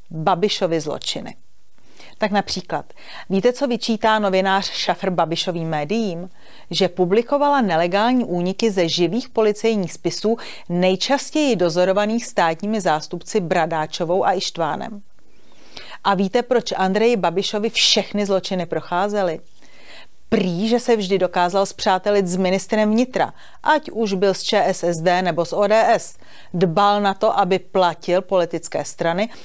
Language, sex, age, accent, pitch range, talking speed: Czech, female, 30-49, native, 175-215 Hz, 120 wpm